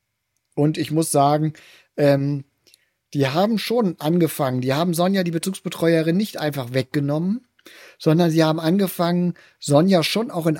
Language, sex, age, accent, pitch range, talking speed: German, male, 40-59, German, 145-180 Hz, 140 wpm